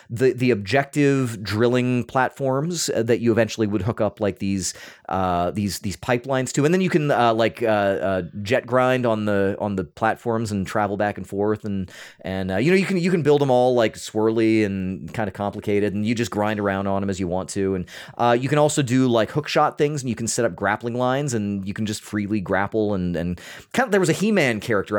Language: English